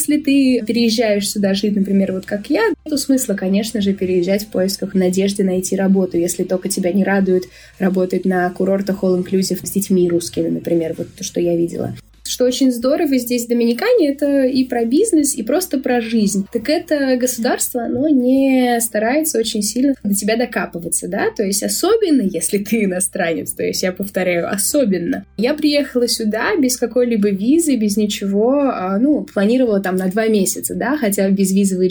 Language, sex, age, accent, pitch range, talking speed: Russian, female, 20-39, native, 190-255 Hz, 175 wpm